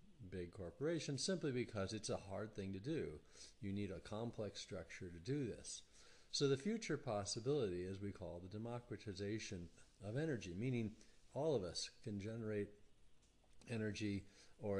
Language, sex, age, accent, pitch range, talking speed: English, male, 40-59, American, 95-120 Hz, 150 wpm